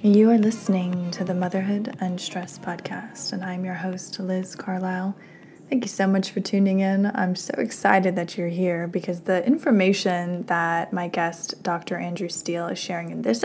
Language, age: English, 20-39